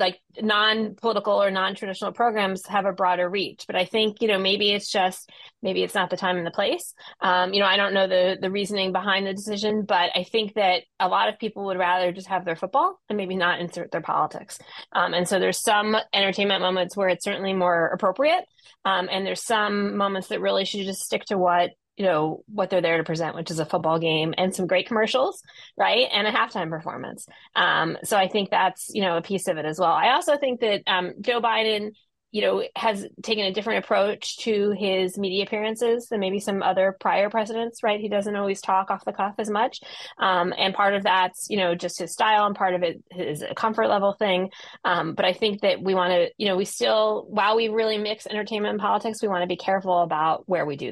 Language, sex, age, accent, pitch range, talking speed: English, female, 20-39, American, 185-215 Hz, 230 wpm